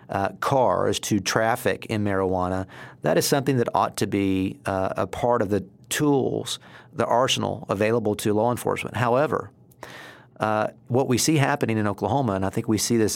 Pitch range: 100-120 Hz